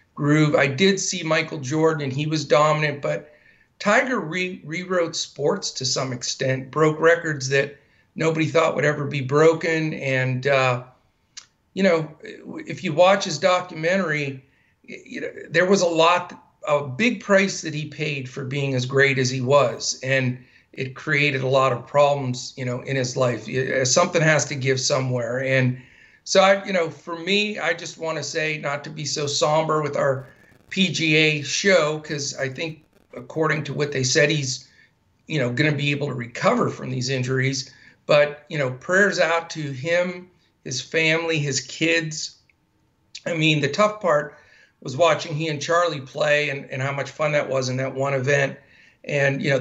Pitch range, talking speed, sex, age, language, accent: 130-160 Hz, 175 wpm, male, 50-69, English, American